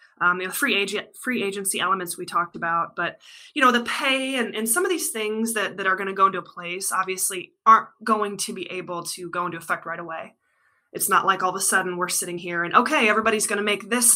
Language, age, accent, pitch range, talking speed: English, 20-39, American, 180-220 Hz, 245 wpm